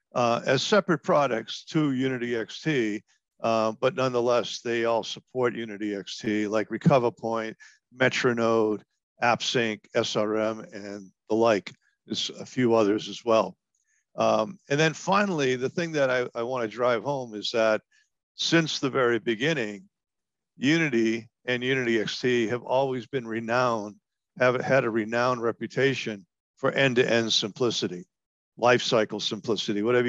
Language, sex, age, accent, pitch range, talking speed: English, male, 50-69, American, 110-130 Hz, 135 wpm